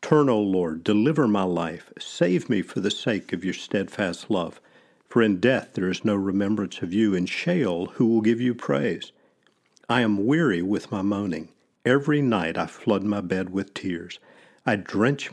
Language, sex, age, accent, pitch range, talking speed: English, male, 50-69, American, 95-120 Hz, 185 wpm